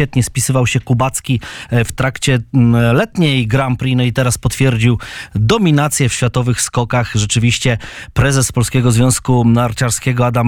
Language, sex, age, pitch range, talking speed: Polish, male, 20-39, 125-155 Hz, 130 wpm